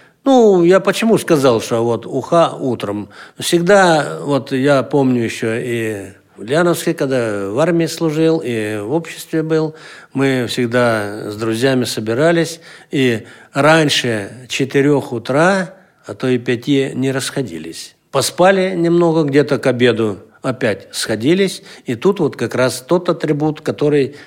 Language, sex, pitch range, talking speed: Russian, male, 120-160 Hz, 135 wpm